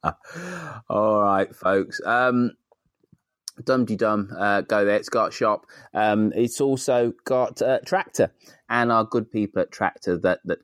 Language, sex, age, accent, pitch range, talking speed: English, male, 20-39, British, 85-120 Hz, 140 wpm